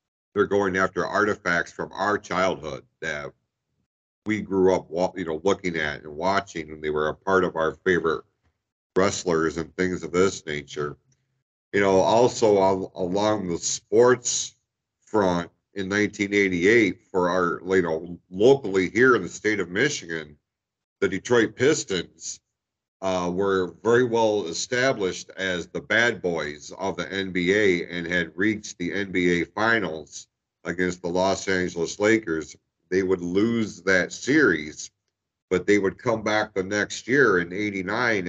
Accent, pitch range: American, 85-105 Hz